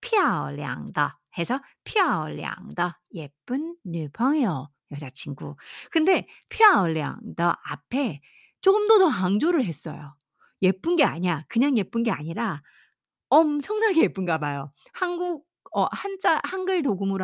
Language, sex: Korean, female